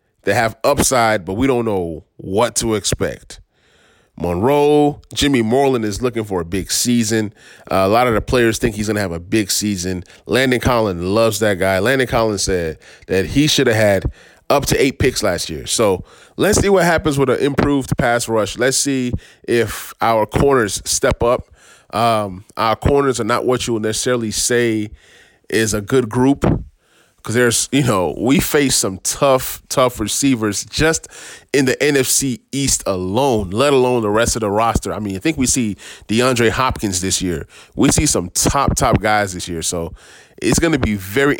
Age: 30-49